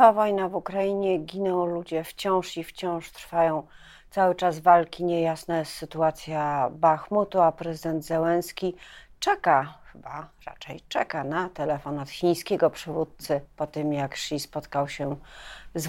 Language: Polish